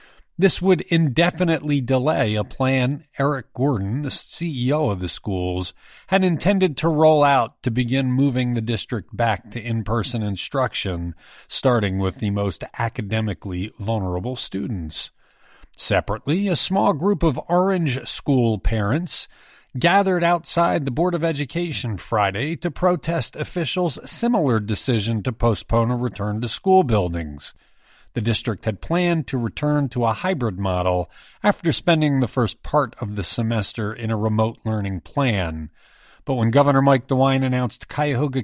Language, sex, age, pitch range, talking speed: English, male, 40-59, 110-155 Hz, 140 wpm